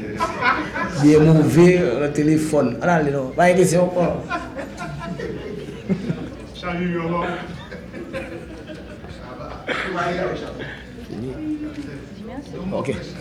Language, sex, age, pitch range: English, male, 20-39, 140-175 Hz